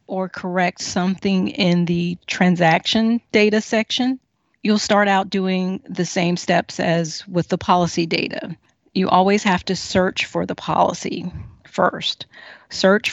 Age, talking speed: 40-59, 135 wpm